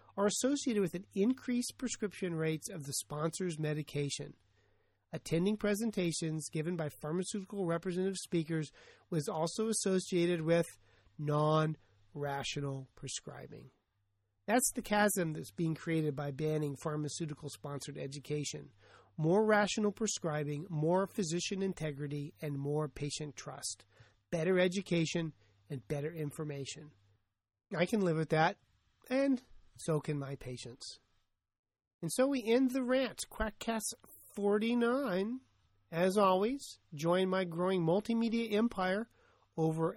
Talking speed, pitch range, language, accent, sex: 115 wpm, 140-190 Hz, English, American, male